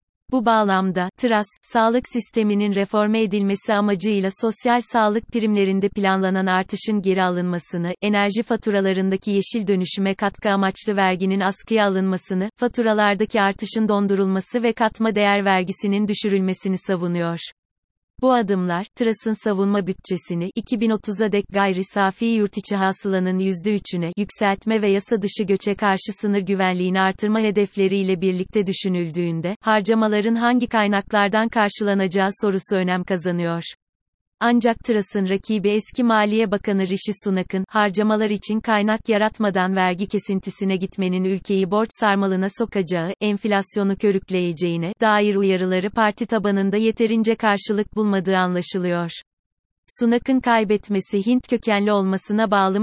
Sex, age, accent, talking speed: female, 30-49, native, 115 wpm